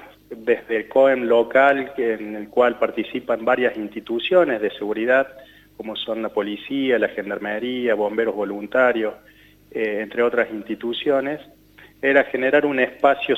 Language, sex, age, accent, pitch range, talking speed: Spanish, male, 30-49, Argentinian, 110-130 Hz, 125 wpm